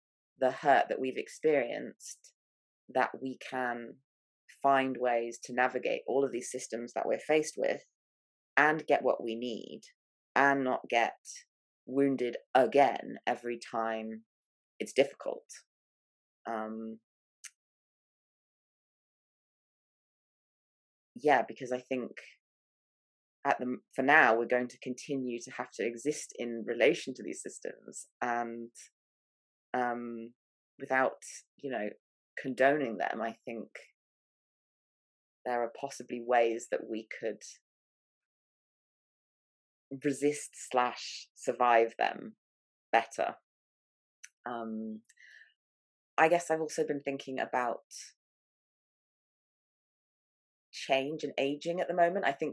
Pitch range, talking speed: 115-140 Hz, 105 wpm